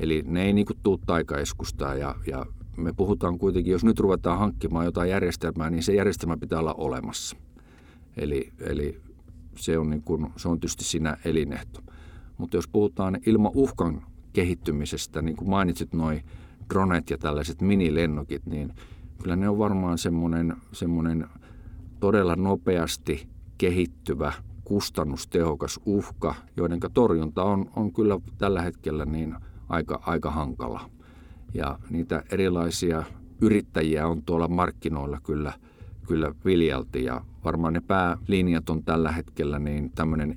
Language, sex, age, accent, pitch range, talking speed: Finnish, male, 50-69, native, 80-95 Hz, 130 wpm